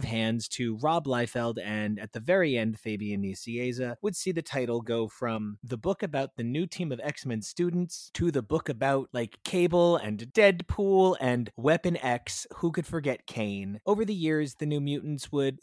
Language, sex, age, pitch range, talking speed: English, male, 30-49, 115-155 Hz, 185 wpm